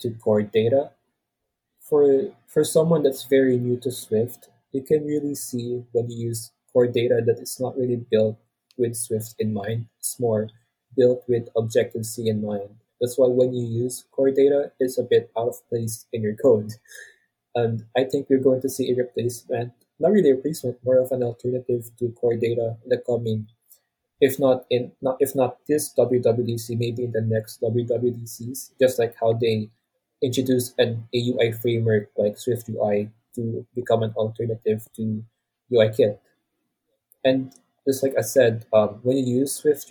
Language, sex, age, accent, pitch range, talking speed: English, male, 20-39, Filipino, 115-130 Hz, 175 wpm